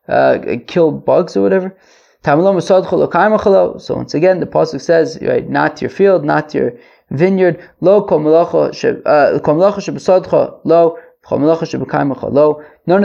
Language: English